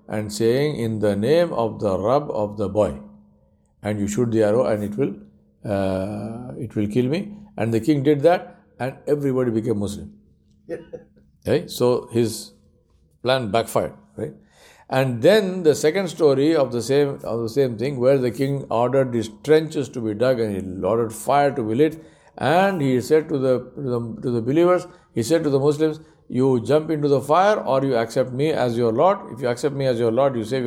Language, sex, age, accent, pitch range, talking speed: English, male, 60-79, Indian, 115-155 Hz, 200 wpm